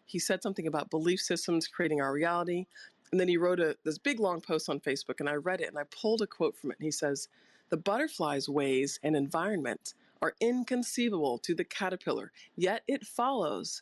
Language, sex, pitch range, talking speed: English, female, 160-215 Hz, 205 wpm